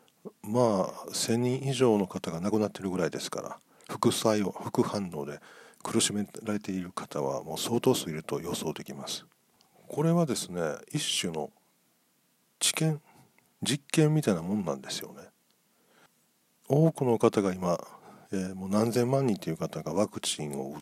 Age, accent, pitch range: 50-69, native, 100-130 Hz